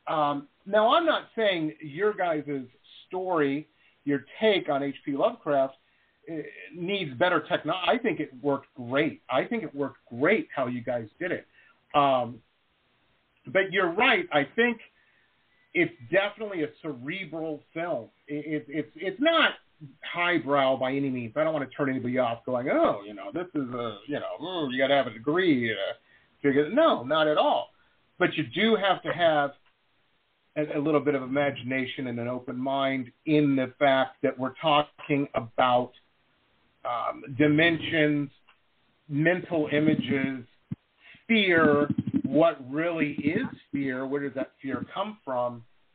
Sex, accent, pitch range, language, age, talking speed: male, American, 135-185 Hz, English, 40-59, 150 wpm